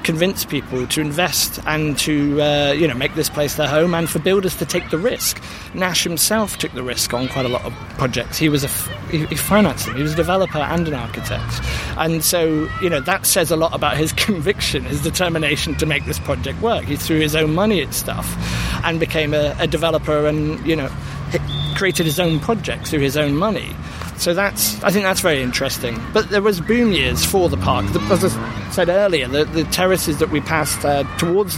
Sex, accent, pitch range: male, British, 130-165 Hz